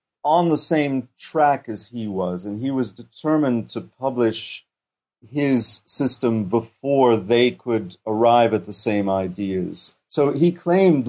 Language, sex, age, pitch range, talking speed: English, male, 40-59, 100-140 Hz, 140 wpm